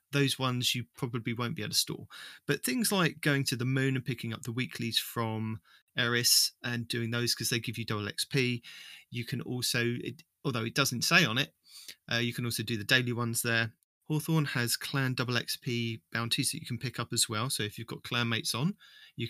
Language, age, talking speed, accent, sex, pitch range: English, 30-49, 220 wpm, British, male, 115-145 Hz